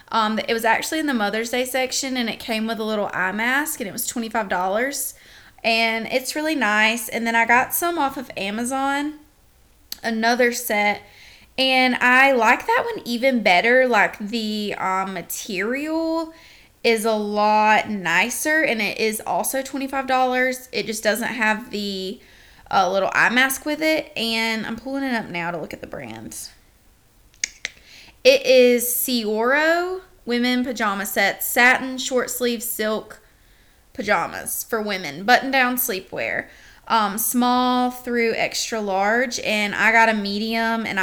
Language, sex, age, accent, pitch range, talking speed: English, female, 20-39, American, 210-260 Hz, 150 wpm